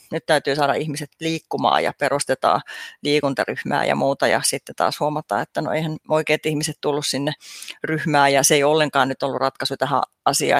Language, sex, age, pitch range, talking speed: Finnish, female, 30-49, 145-160 Hz, 175 wpm